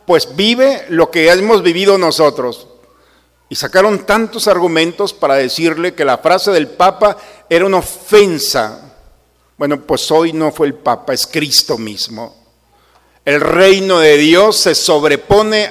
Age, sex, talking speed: 50-69, male, 140 wpm